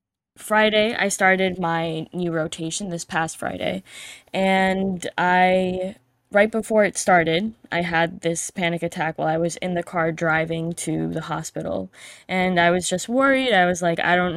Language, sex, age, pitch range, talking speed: English, female, 10-29, 165-195 Hz, 165 wpm